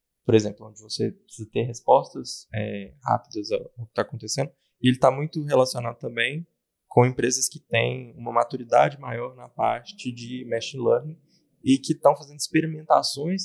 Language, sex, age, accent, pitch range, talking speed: Portuguese, male, 20-39, Brazilian, 110-145 Hz, 150 wpm